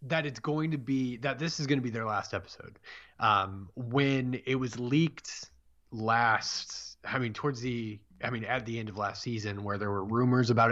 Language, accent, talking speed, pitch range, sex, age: English, American, 205 wpm, 105-135 Hz, male, 20-39